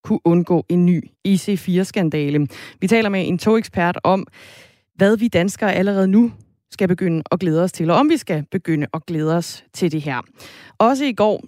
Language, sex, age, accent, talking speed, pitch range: Danish, female, 20-39, native, 190 wpm, 160-210 Hz